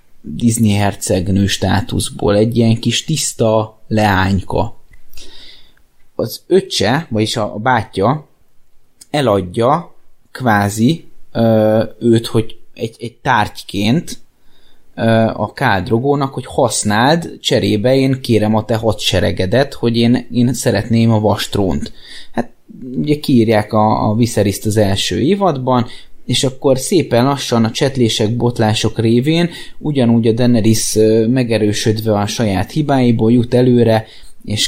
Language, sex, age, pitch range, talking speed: Hungarian, male, 20-39, 105-130 Hz, 115 wpm